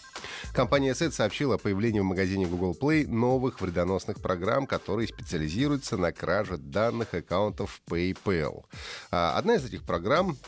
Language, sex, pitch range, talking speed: Russian, male, 100-160 Hz, 130 wpm